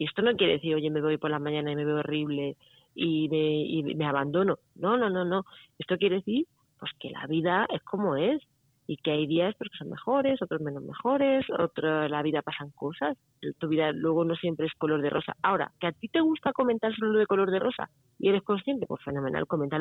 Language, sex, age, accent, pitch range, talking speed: Spanish, female, 30-49, Spanish, 155-200 Hz, 235 wpm